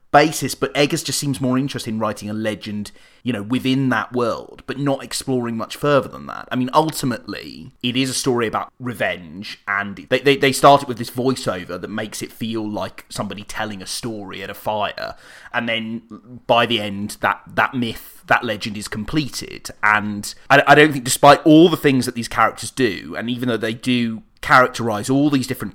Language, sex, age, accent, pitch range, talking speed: English, male, 30-49, British, 105-130 Hz, 200 wpm